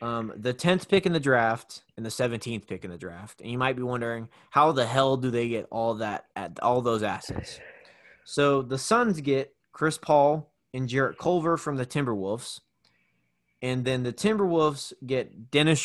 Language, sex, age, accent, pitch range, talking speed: English, male, 20-39, American, 115-145 Hz, 185 wpm